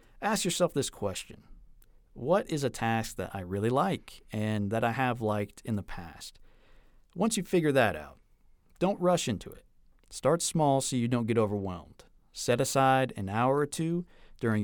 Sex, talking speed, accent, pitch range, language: male, 175 wpm, American, 105-150 Hz, English